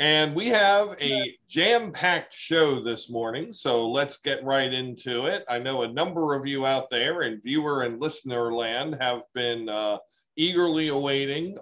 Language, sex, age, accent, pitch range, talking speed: English, male, 40-59, American, 120-160 Hz, 165 wpm